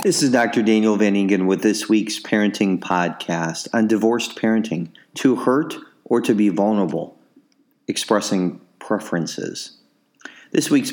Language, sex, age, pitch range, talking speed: English, male, 40-59, 100-120 Hz, 130 wpm